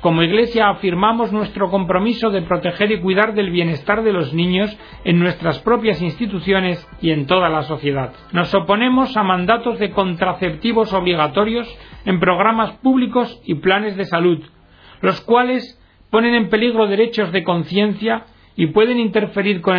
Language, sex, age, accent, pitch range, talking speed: Spanish, male, 40-59, Spanish, 175-220 Hz, 150 wpm